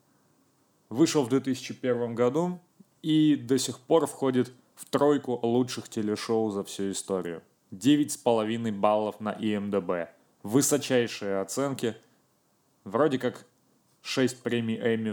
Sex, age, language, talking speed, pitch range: male, 20-39, Russian, 105 wpm, 105-130 Hz